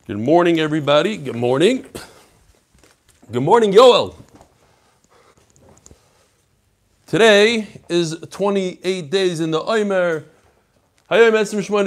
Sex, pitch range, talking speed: male, 125-175 Hz, 55 wpm